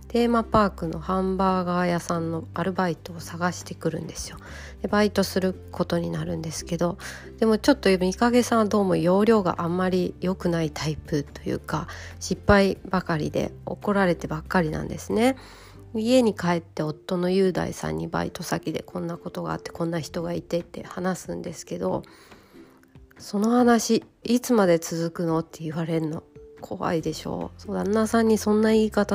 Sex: female